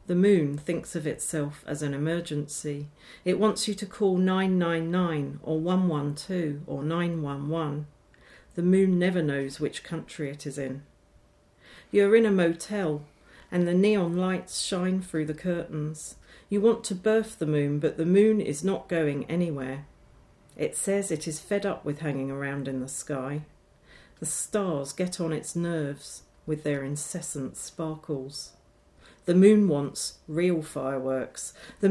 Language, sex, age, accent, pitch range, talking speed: English, female, 40-59, British, 145-185 Hz, 150 wpm